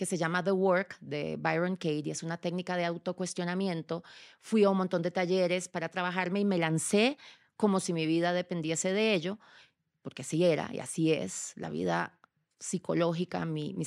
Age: 30-49